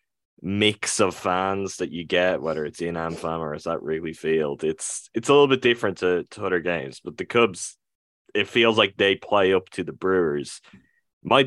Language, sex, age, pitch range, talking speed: English, male, 10-29, 85-105 Hz, 200 wpm